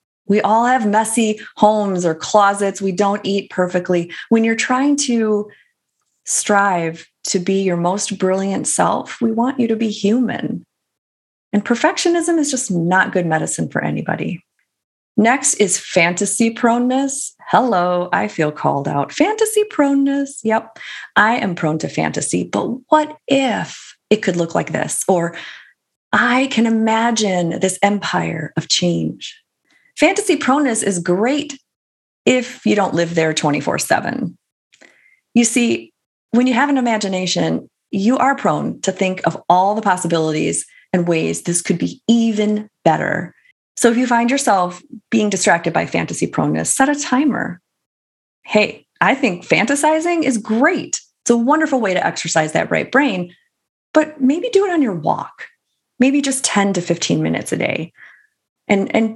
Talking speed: 150 wpm